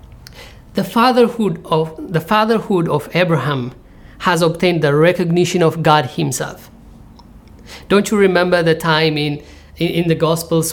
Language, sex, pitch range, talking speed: English, male, 135-175 Hz, 115 wpm